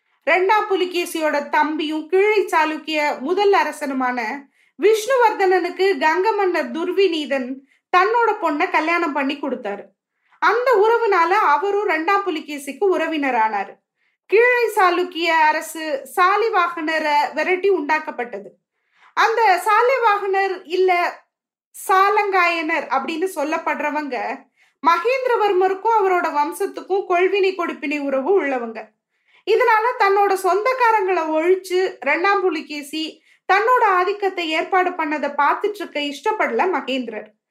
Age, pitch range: 20-39, 300-395 Hz